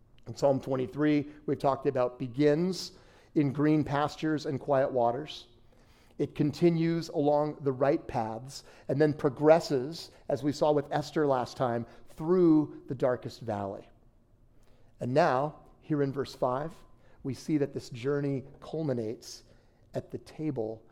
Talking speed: 140 wpm